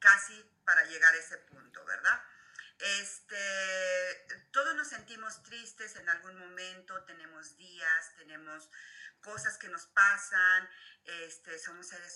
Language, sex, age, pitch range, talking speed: Spanish, female, 40-59, 170-200 Hz, 125 wpm